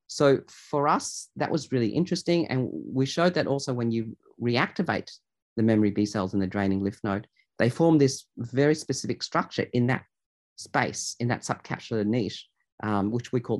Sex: male